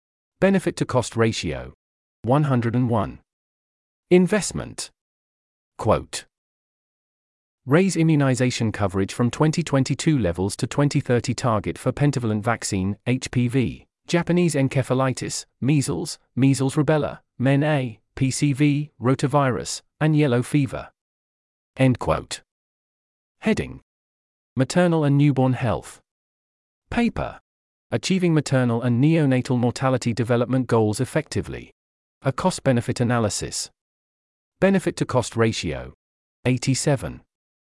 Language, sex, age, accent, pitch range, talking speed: English, male, 40-59, British, 105-145 Hz, 85 wpm